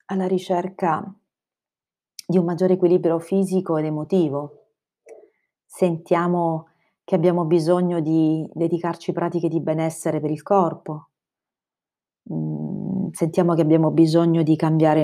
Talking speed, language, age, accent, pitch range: 110 wpm, Italian, 40-59, native, 160-195 Hz